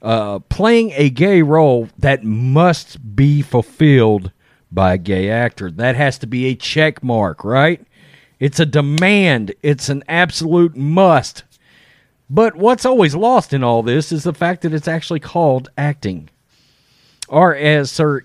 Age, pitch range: 40-59, 105-145 Hz